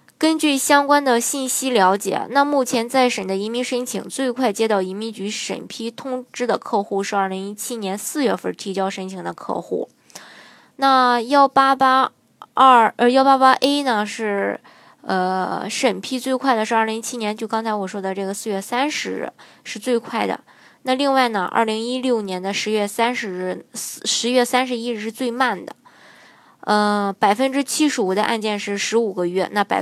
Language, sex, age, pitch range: Chinese, female, 20-39, 200-255 Hz